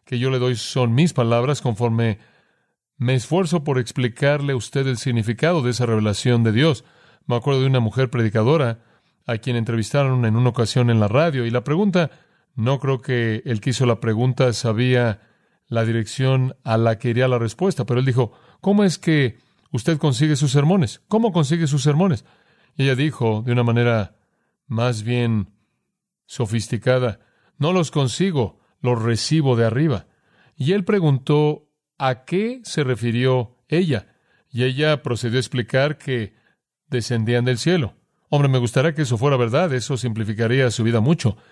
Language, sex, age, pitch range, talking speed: Spanish, male, 40-59, 120-150 Hz, 165 wpm